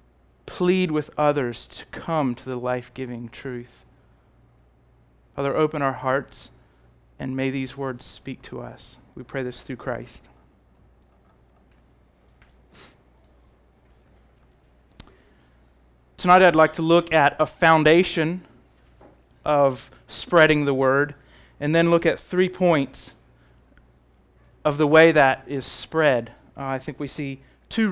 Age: 30-49